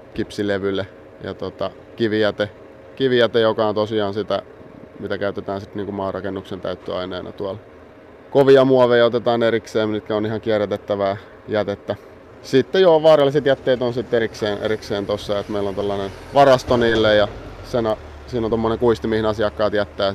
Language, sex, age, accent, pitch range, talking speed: Finnish, male, 30-49, native, 100-115 Hz, 145 wpm